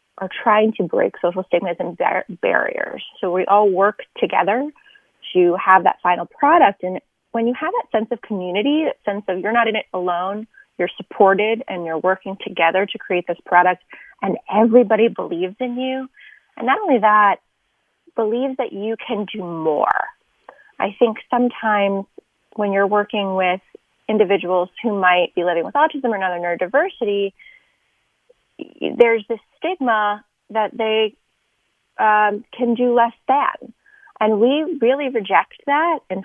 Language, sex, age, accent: English, female, 30-49, American